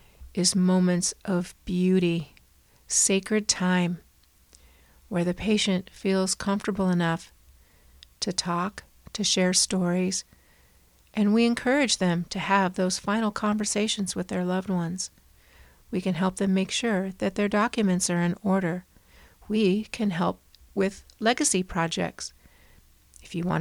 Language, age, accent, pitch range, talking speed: English, 50-69, American, 170-205 Hz, 130 wpm